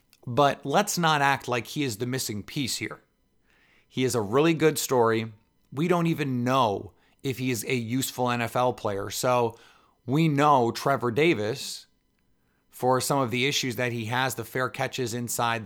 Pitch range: 125-160 Hz